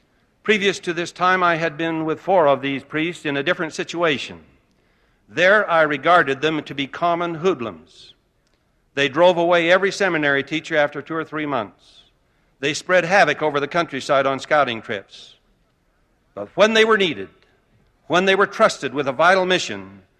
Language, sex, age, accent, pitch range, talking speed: English, male, 60-79, American, 135-175 Hz, 170 wpm